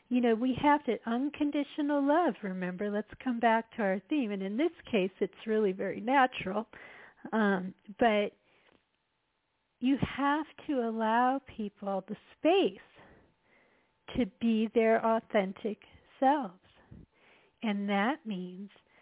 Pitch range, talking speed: 200-265 Hz, 125 wpm